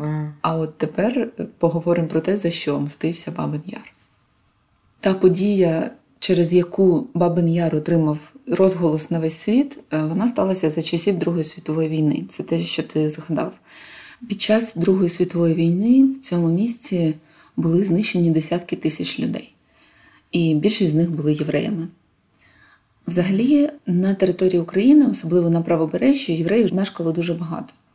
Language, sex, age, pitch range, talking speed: Ukrainian, female, 20-39, 165-195 Hz, 135 wpm